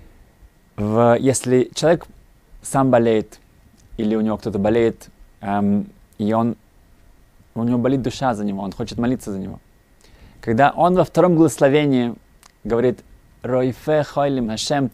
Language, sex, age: Russian, male, 20-39